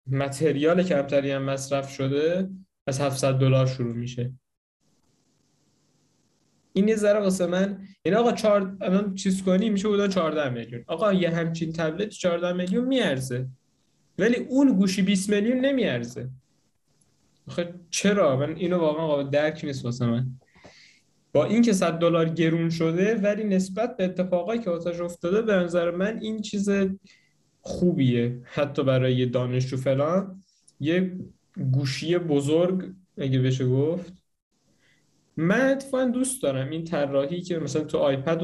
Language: Persian